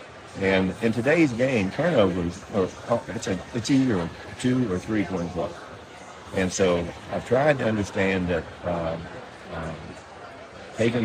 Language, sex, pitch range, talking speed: English, male, 95-115 Hz, 140 wpm